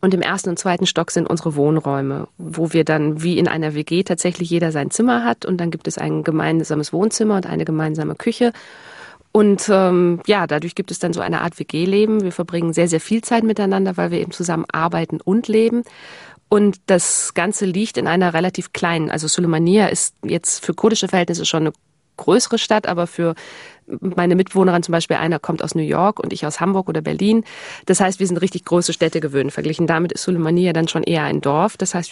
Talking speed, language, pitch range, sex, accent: 210 wpm, German, 160-190 Hz, female, German